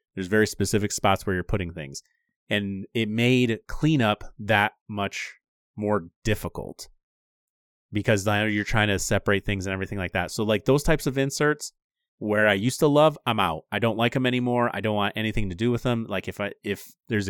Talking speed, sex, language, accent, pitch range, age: 200 wpm, male, English, American, 100-120 Hz, 30-49